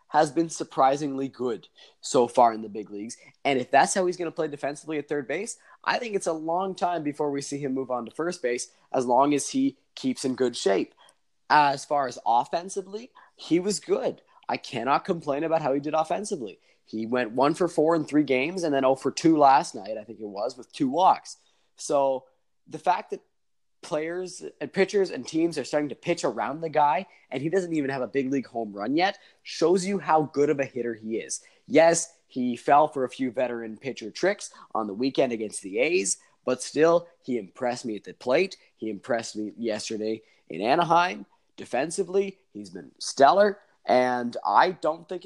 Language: English